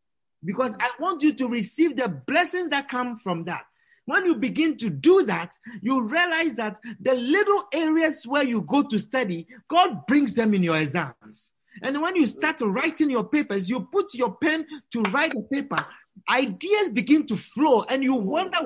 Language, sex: English, male